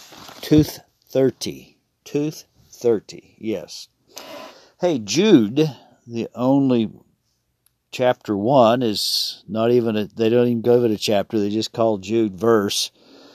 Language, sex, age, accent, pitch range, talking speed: English, male, 50-69, American, 105-120 Hz, 125 wpm